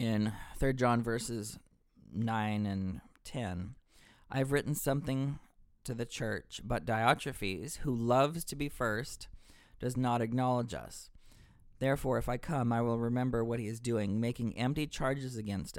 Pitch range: 105-130 Hz